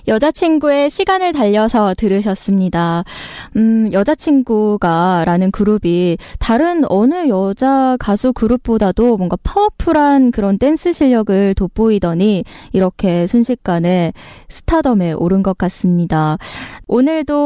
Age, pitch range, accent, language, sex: 20-39, 185-245 Hz, native, Korean, female